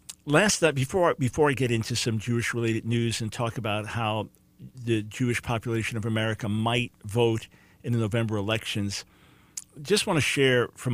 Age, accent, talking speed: 50-69, American, 165 wpm